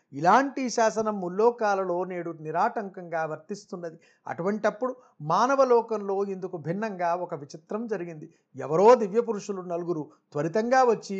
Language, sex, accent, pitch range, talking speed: Telugu, male, native, 175-210 Hz, 105 wpm